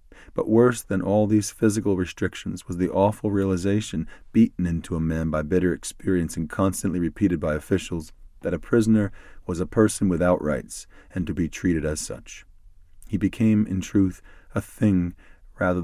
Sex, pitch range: male, 85-100 Hz